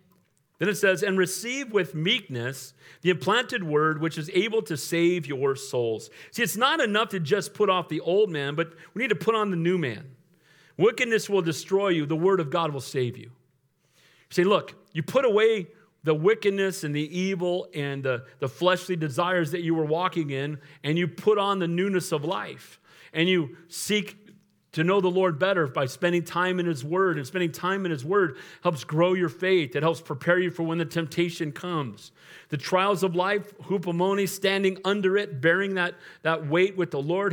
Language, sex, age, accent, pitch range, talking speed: English, male, 40-59, American, 150-190 Hz, 200 wpm